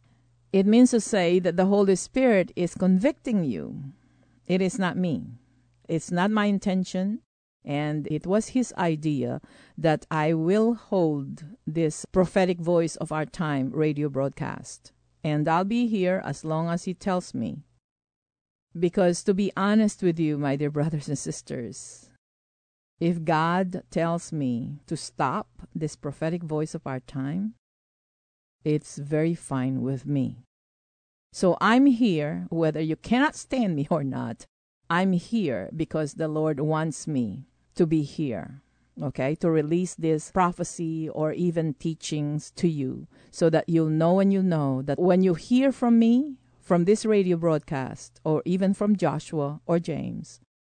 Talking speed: 150 wpm